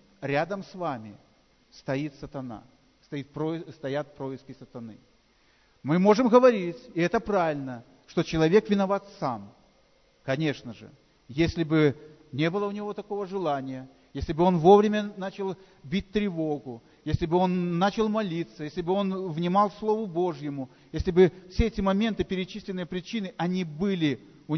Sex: male